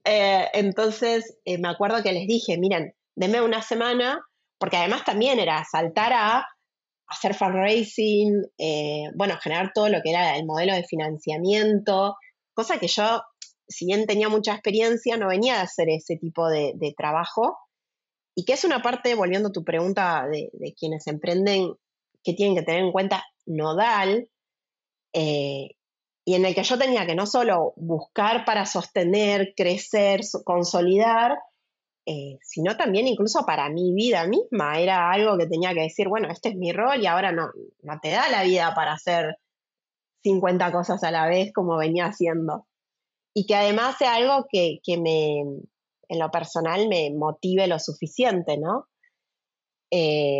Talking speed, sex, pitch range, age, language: 165 wpm, female, 170-220 Hz, 30-49, Spanish